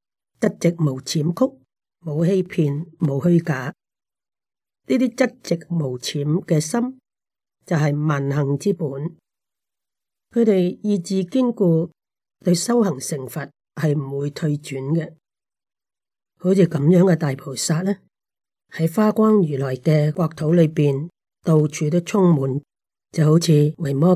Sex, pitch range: female, 155-195 Hz